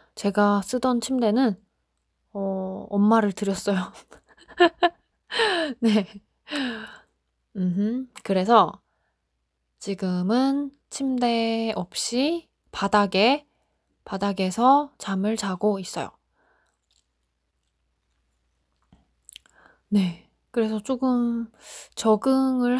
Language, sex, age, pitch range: Korean, female, 20-39, 185-255 Hz